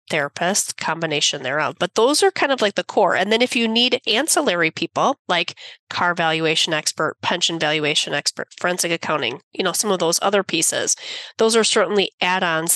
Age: 30-49